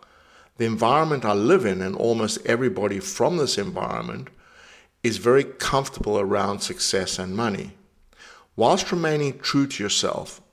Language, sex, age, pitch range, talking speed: English, male, 50-69, 100-120 Hz, 130 wpm